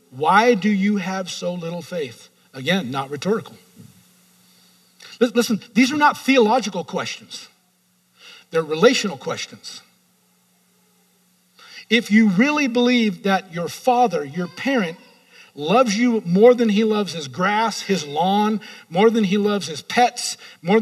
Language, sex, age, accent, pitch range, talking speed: English, male, 50-69, American, 175-225 Hz, 130 wpm